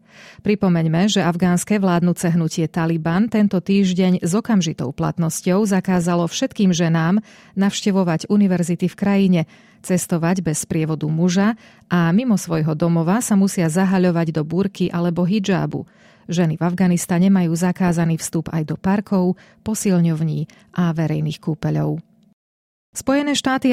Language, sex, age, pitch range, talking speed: Slovak, female, 30-49, 170-200 Hz, 120 wpm